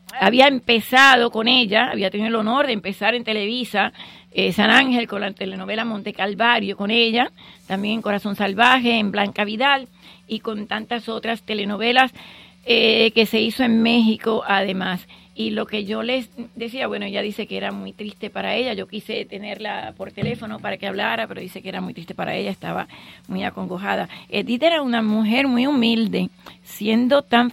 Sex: female